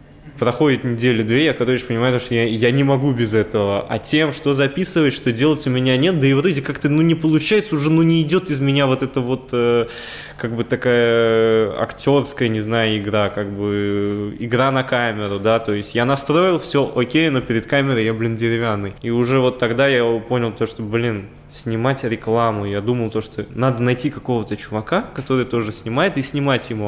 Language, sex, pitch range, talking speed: Russian, male, 115-140 Hz, 200 wpm